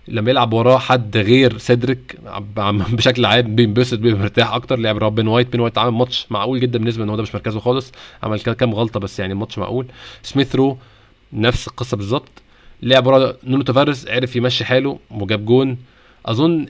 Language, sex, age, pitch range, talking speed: Arabic, male, 20-39, 110-130 Hz, 185 wpm